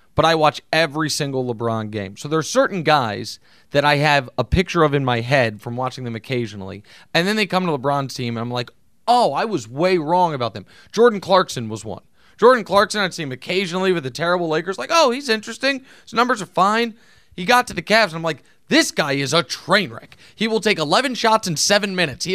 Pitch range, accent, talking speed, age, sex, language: 130-190 Hz, American, 235 wpm, 30-49, male, English